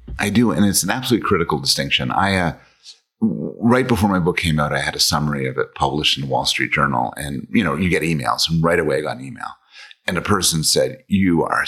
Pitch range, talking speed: 75-100 Hz, 245 wpm